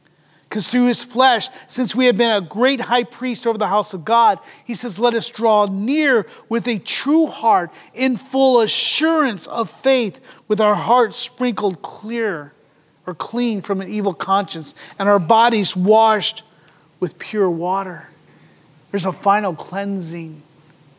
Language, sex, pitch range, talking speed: English, male, 190-275 Hz, 155 wpm